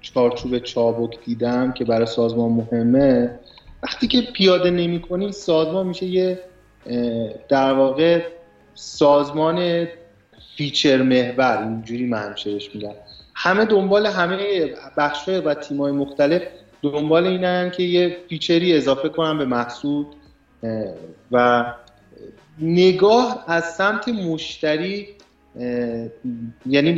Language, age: Persian, 30-49